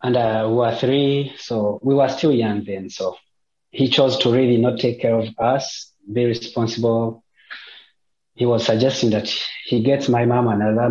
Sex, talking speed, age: male, 175 wpm, 30-49